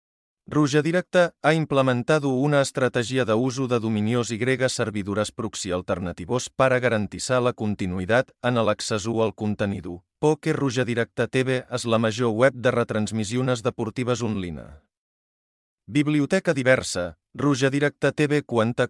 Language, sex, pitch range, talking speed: English, male, 105-130 Hz, 130 wpm